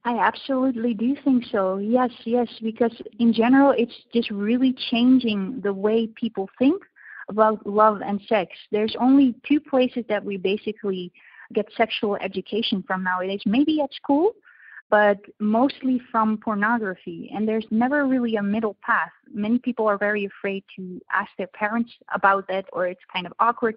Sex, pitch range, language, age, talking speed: female, 200-240 Hz, English, 20-39, 160 wpm